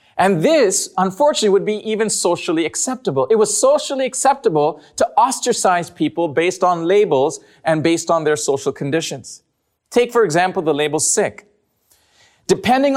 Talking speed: 145 wpm